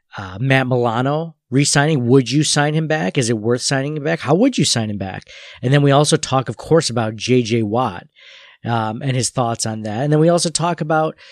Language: English